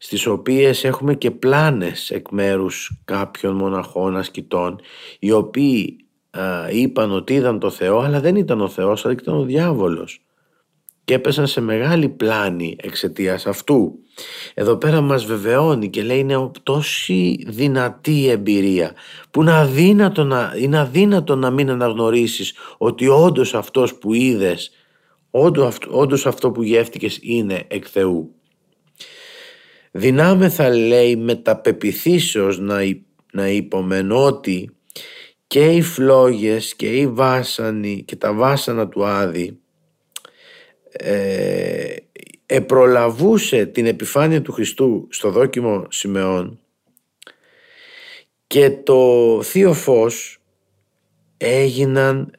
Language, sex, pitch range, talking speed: Greek, male, 110-150 Hz, 115 wpm